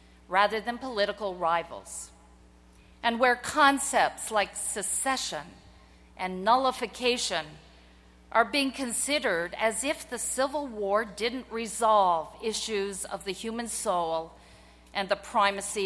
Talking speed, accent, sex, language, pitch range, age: 110 wpm, American, female, English, 155-240 Hz, 50-69